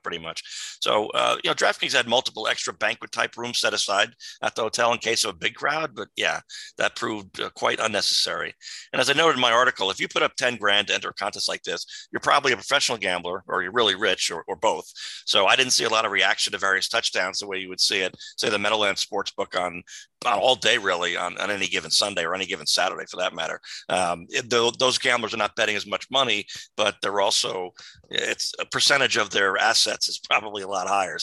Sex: male